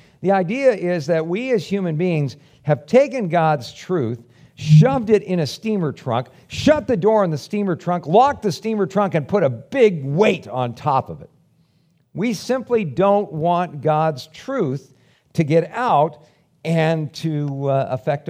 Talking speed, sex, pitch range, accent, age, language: 165 wpm, male, 145-200 Hz, American, 50-69, English